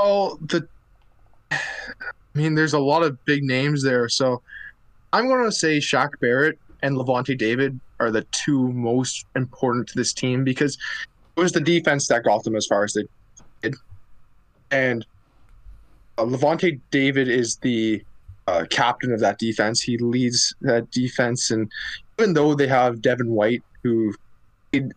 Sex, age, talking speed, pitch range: male, 20-39, 155 wpm, 110-140 Hz